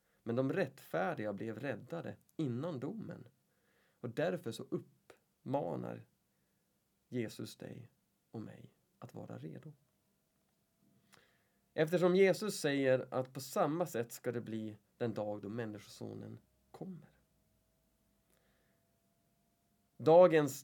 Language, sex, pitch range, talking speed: Swedish, male, 120-155 Hz, 100 wpm